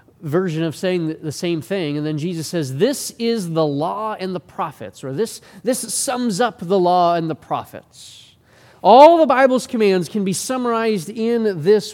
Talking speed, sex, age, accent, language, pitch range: 180 wpm, male, 30-49, American, English, 135-185 Hz